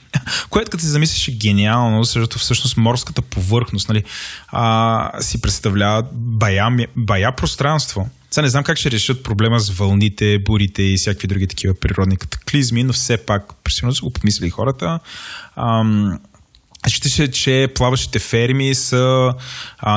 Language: Bulgarian